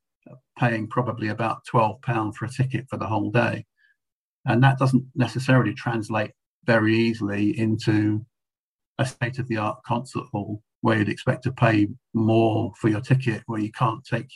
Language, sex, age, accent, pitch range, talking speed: English, male, 50-69, British, 110-125 Hz, 150 wpm